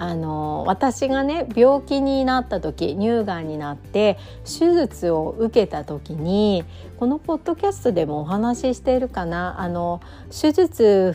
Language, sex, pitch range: Japanese, female, 175-285 Hz